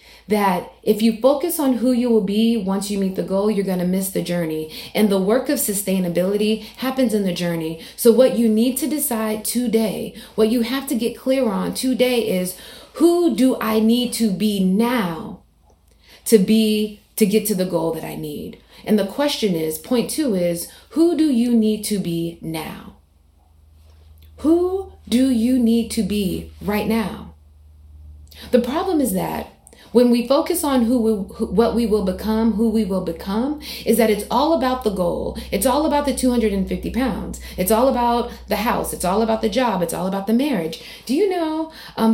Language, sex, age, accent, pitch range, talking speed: English, female, 30-49, American, 195-255 Hz, 190 wpm